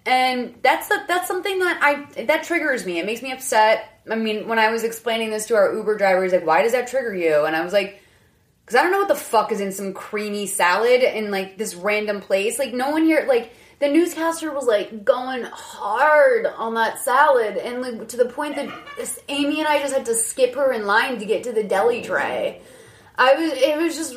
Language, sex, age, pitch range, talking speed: English, female, 20-39, 195-260 Hz, 235 wpm